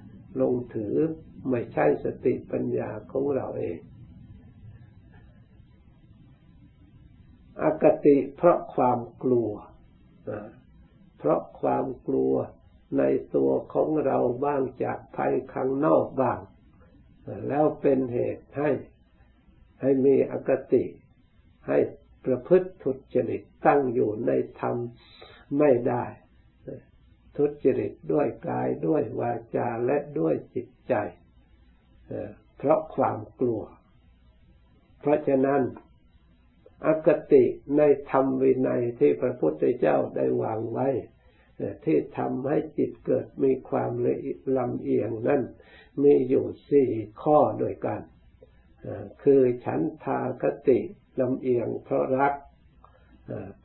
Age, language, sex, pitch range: 60-79, Thai, male, 85-135 Hz